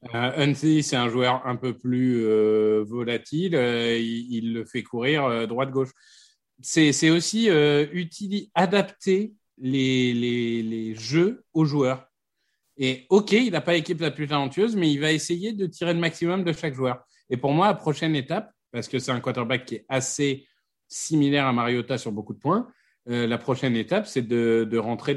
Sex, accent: male, French